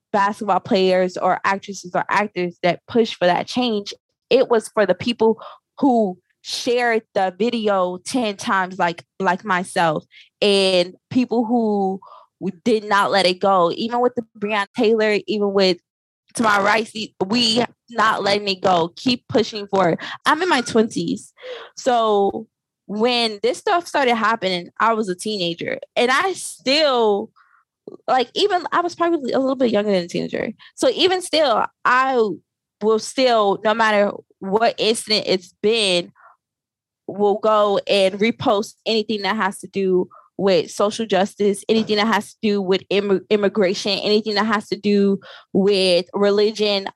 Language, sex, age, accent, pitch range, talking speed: English, female, 20-39, American, 190-230 Hz, 150 wpm